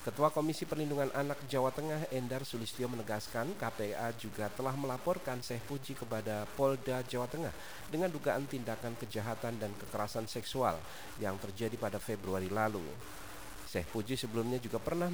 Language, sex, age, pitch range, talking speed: Indonesian, male, 40-59, 105-145 Hz, 145 wpm